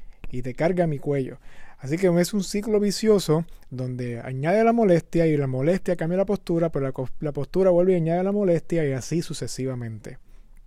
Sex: male